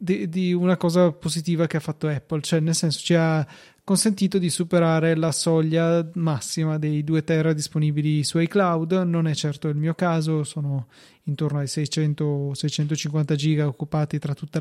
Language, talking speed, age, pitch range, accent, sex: Italian, 160 wpm, 30-49, 155-180 Hz, native, male